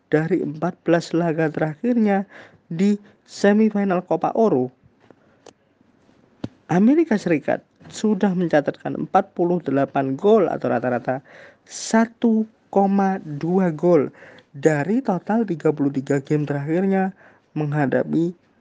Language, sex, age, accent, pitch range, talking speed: Indonesian, male, 20-39, native, 145-200 Hz, 75 wpm